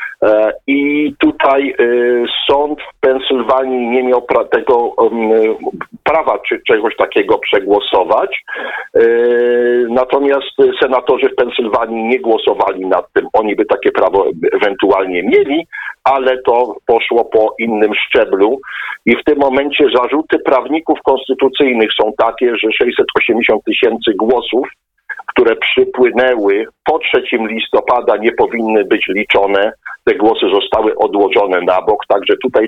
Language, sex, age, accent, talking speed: Polish, male, 50-69, native, 115 wpm